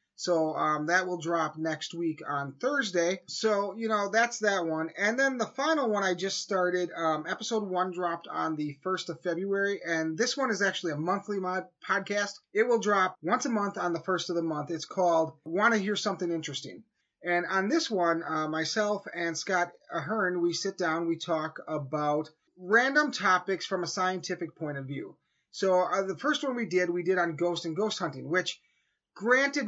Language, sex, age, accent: English, male, 30-49, American